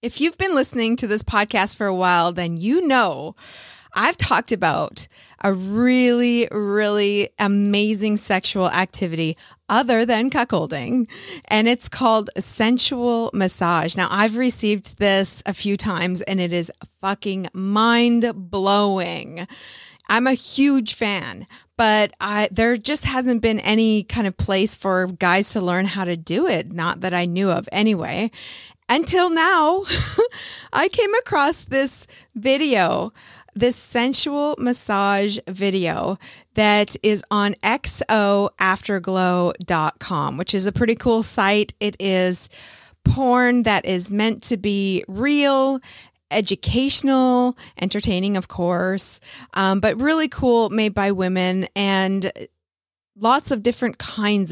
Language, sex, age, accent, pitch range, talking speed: English, female, 30-49, American, 190-245 Hz, 125 wpm